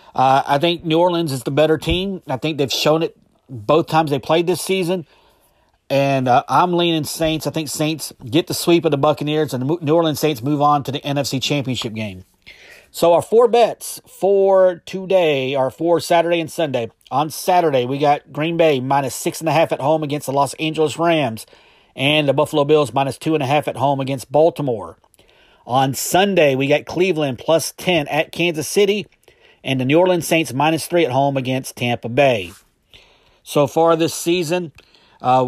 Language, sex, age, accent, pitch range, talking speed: English, male, 40-59, American, 140-165 Hz, 195 wpm